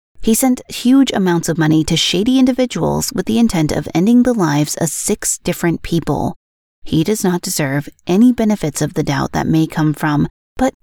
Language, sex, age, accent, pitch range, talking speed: English, female, 30-49, American, 160-215 Hz, 190 wpm